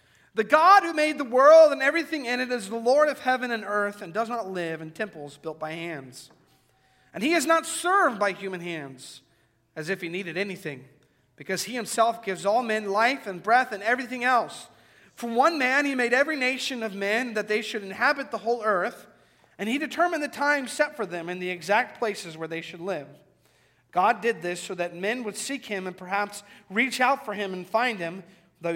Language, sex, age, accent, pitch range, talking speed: English, male, 40-59, American, 170-230 Hz, 215 wpm